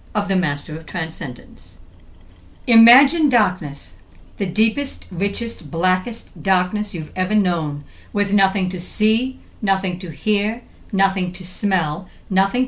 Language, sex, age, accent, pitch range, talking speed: English, female, 60-79, American, 160-215 Hz, 125 wpm